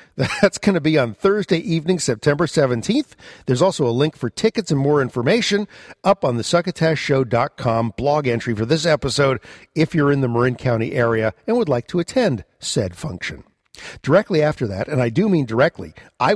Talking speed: 185 wpm